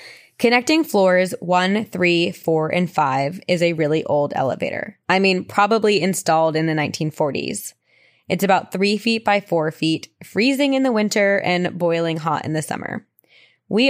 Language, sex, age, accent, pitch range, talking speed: English, female, 20-39, American, 170-225 Hz, 160 wpm